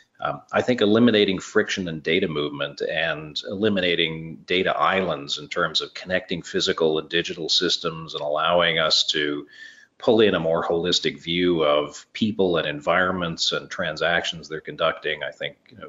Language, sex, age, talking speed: English, male, 40-59, 150 wpm